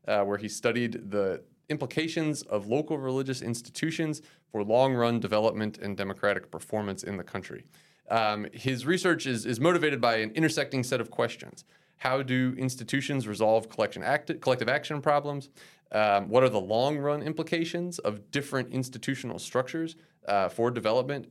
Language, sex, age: English, male, 30-49